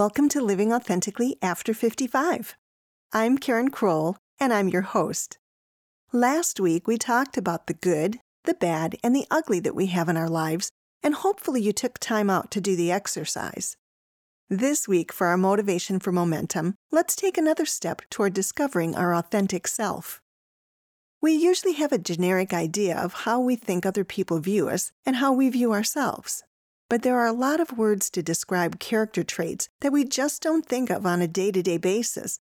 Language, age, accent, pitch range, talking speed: English, 40-59, American, 180-270 Hz, 180 wpm